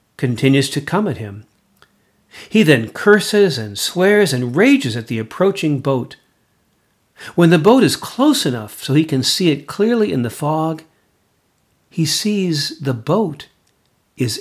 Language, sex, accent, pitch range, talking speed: English, male, American, 130-175 Hz, 150 wpm